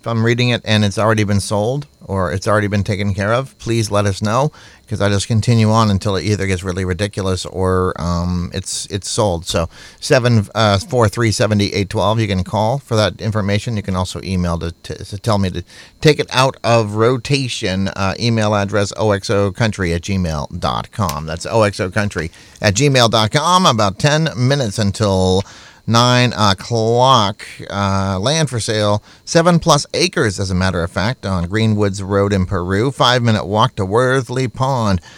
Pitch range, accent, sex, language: 100-125 Hz, American, male, English